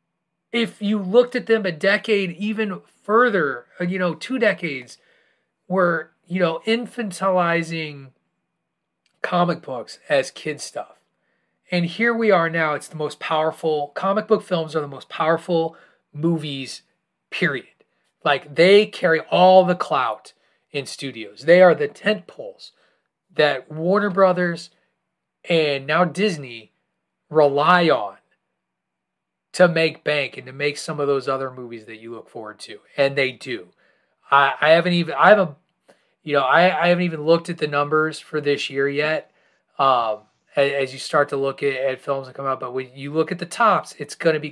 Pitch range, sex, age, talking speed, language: 145-195 Hz, male, 30-49, 165 wpm, English